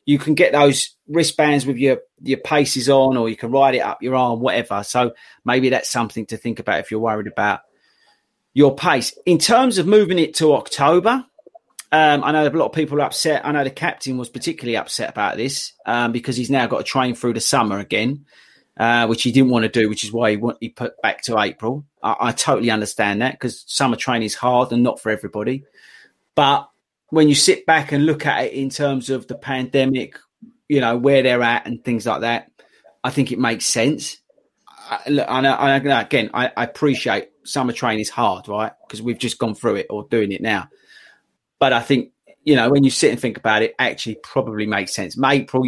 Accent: British